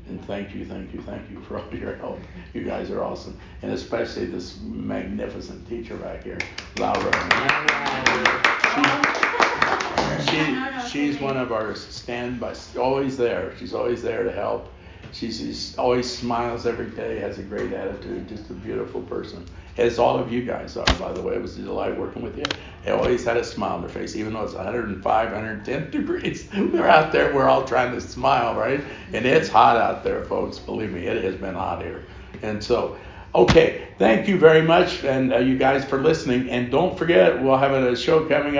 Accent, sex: American, male